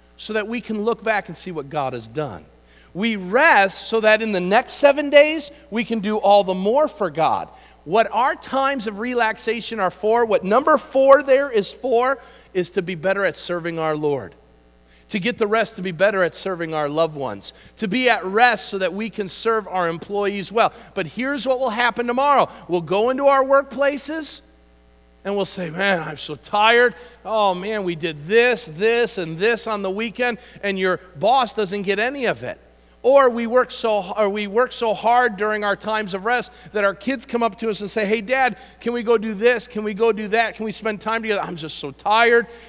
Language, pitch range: English, 160-235 Hz